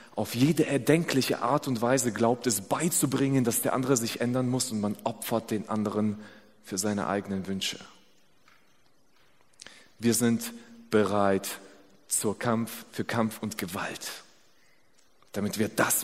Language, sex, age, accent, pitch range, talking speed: German, male, 30-49, German, 110-140 Hz, 135 wpm